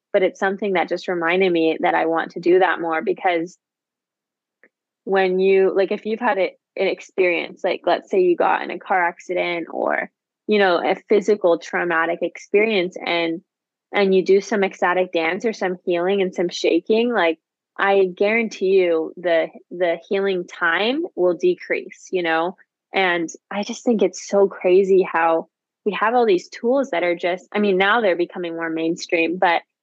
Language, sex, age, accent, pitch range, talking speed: English, female, 20-39, American, 175-205 Hz, 175 wpm